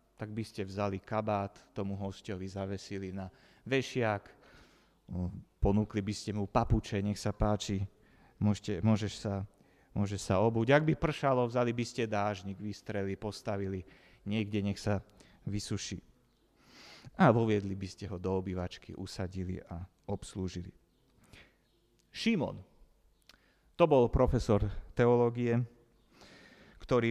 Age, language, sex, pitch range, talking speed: 30-49, Slovak, male, 100-150 Hz, 115 wpm